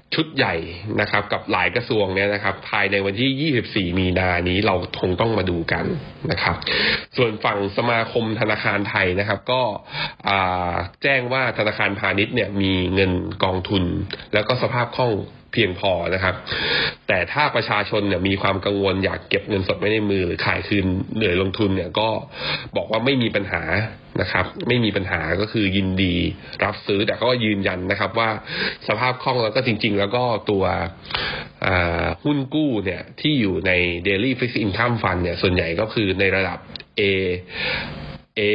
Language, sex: Thai, male